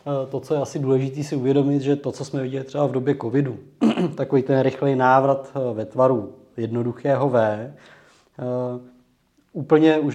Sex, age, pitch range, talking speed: male, 20-39, 120-140 Hz, 160 wpm